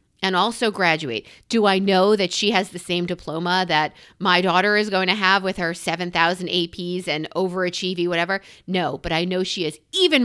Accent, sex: American, female